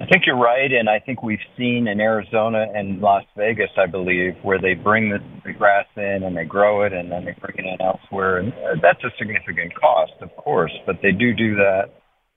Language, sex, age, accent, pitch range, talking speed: English, male, 50-69, American, 100-125 Hz, 220 wpm